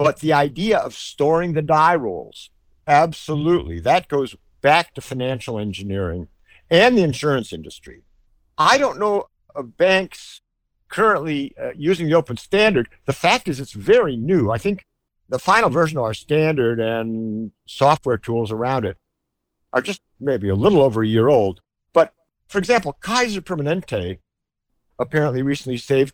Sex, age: male, 50-69